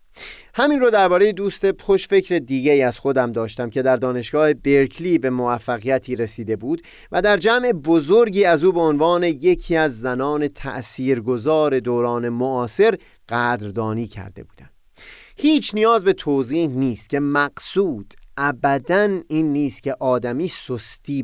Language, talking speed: Persian, 135 wpm